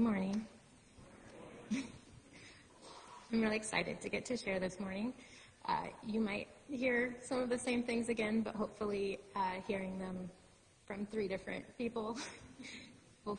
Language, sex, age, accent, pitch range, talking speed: English, female, 30-49, American, 180-220 Hz, 140 wpm